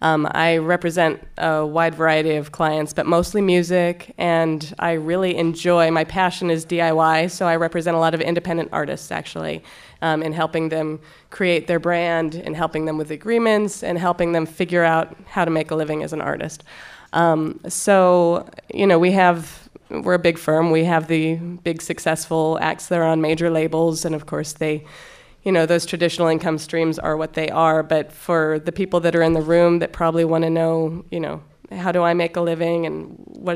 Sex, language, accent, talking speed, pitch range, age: female, English, American, 200 wpm, 160-170 Hz, 20-39